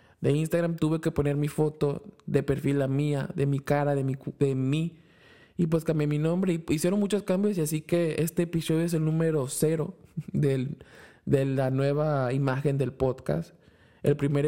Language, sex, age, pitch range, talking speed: Spanish, male, 20-39, 135-160 Hz, 185 wpm